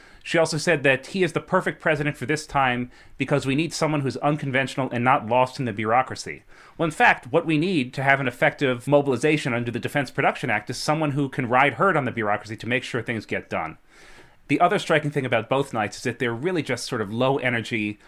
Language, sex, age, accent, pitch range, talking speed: English, male, 30-49, American, 115-145 Hz, 235 wpm